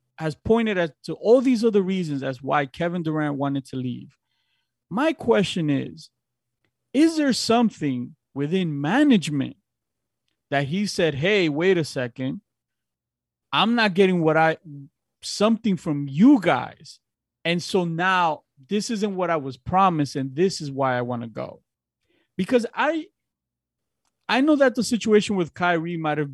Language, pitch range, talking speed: English, 140-205 Hz, 150 wpm